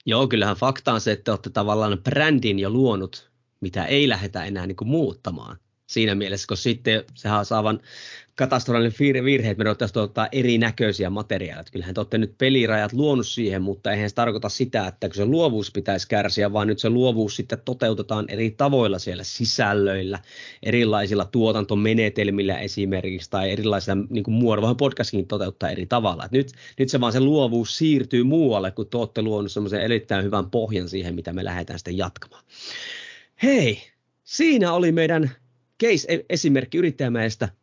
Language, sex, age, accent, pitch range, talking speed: Finnish, male, 30-49, native, 105-135 Hz, 160 wpm